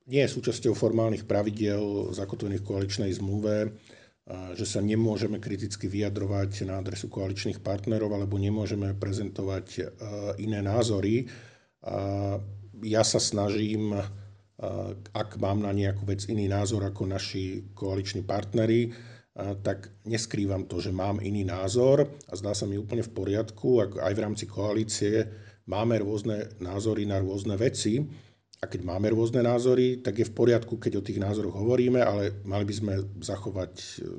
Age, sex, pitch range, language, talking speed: 50-69, male, 100-115 Hz, Slovak, 140 wpm